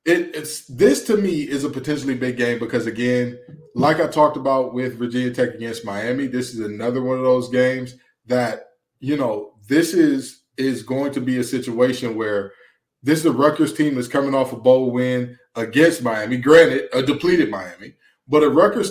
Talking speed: 190 wpm